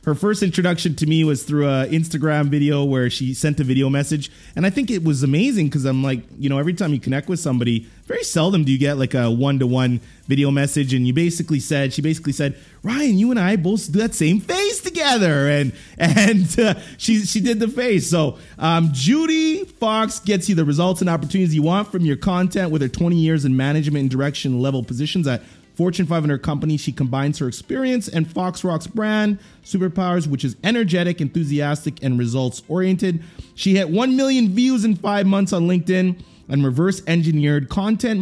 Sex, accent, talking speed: male, American, 195 wpm